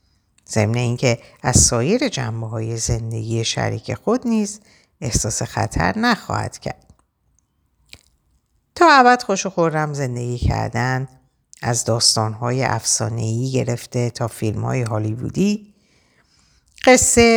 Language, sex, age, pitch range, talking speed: Persian, female, 50-69, 115-170 Hz, 95 wpm